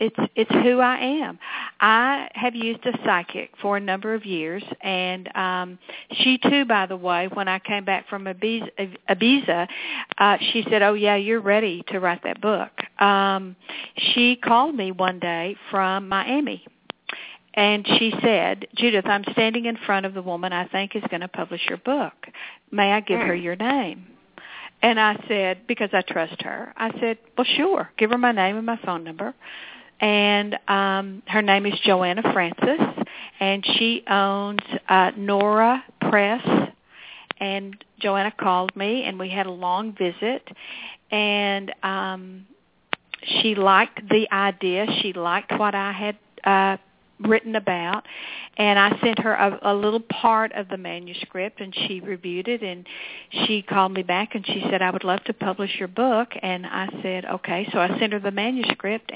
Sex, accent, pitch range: female, American, 190-225 Hz